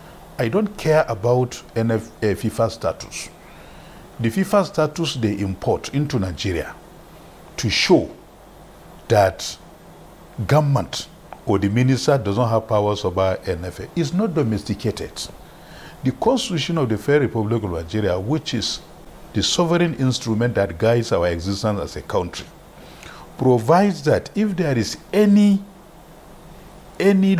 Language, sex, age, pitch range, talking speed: English, male, 50-69, 110-185 Hz, 120 wpm